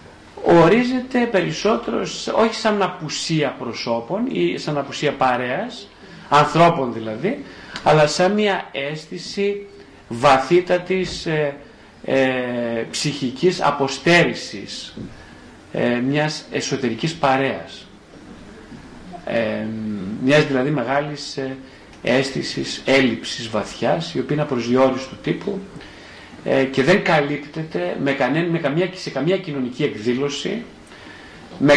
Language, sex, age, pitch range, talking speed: Greek, male, 40-59, 135-180 Hz, 85 wpm